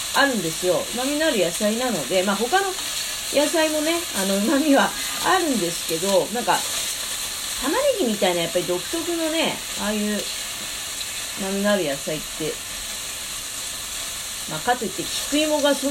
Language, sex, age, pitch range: Japanese, female, 30-49, 180-280 Hz